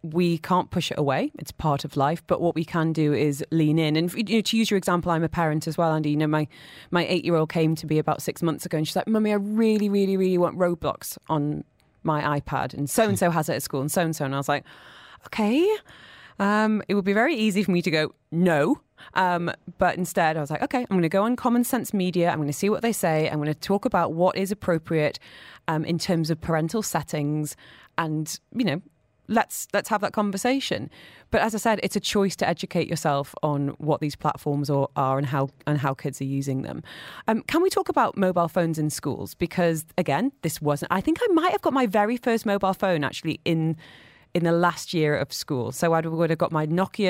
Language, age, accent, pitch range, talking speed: English, 30-49, British, 150-200 Hz, 235 wpm